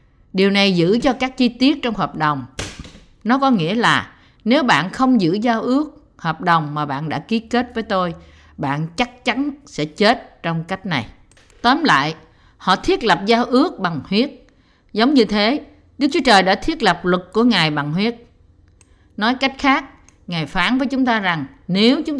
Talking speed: 190 wpm